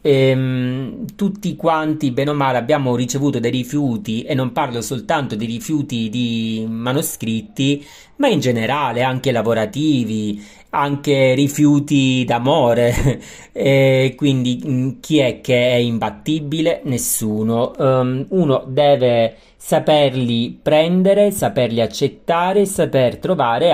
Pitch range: 115-145 Hz